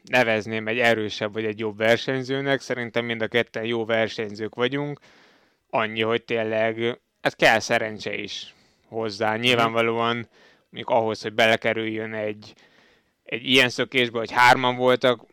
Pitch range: 115-125 Hz